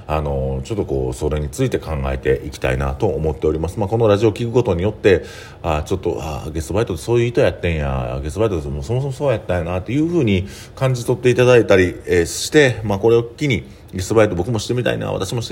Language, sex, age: Japanese, male, 40-59